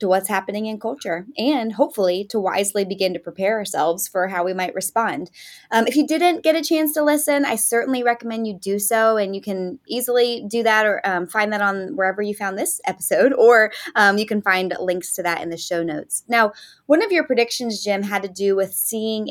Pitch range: 190-255 Hz